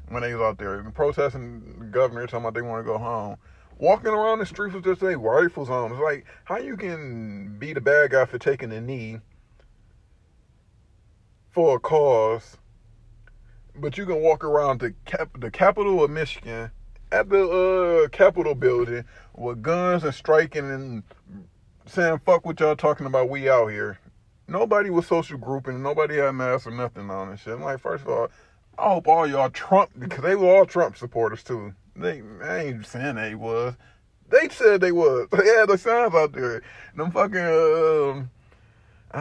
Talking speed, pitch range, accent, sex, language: 185 wpm, 105-150 Hz, American, male, English